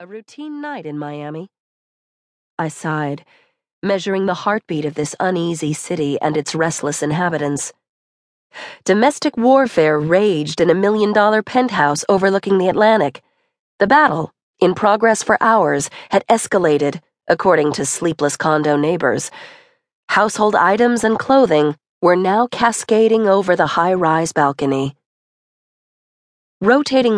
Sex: female